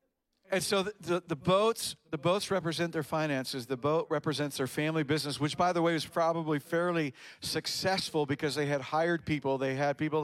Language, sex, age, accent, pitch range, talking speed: English, male, 50-69, American, 150-180 Hz, 195 wpm